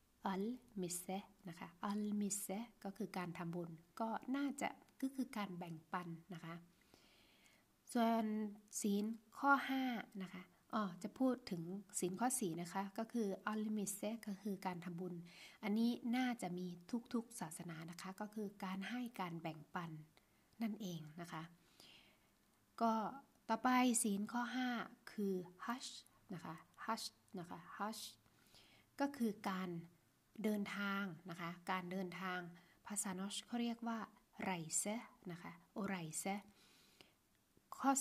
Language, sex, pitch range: Thai, female, 180-225 Hz